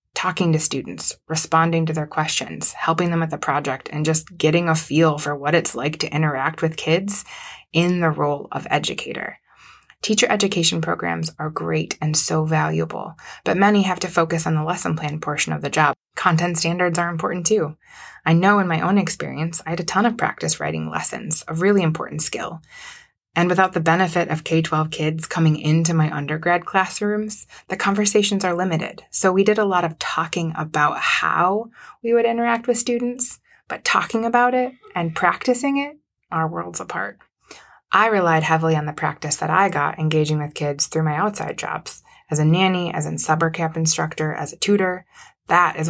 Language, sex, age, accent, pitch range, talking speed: English, female, 20-39, American, 155-190 Hz, 185 wpm